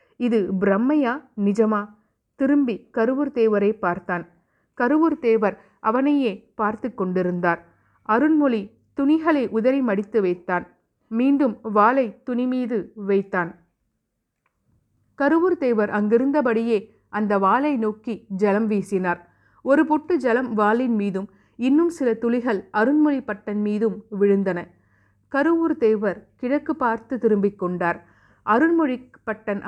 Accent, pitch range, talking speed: native, 200-260 Hz, 95 wpm